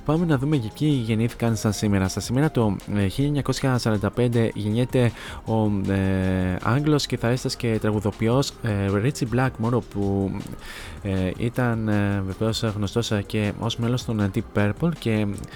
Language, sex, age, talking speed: Greek, male, 20-39, 145 wpm